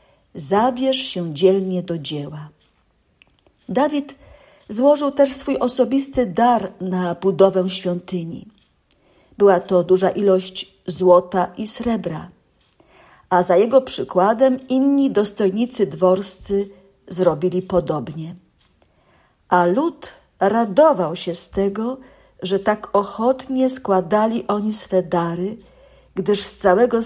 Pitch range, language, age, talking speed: 180-230 Hz, Polish, 50-69, 100 wpm